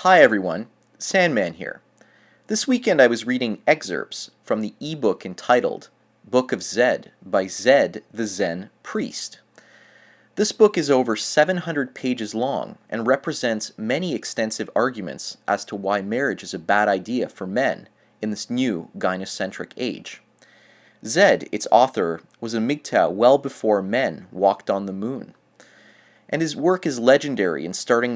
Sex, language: male, English